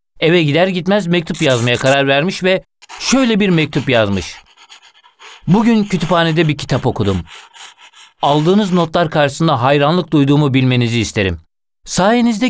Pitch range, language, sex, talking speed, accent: 130-180 Hz, Turkish, male, 120 wpm, native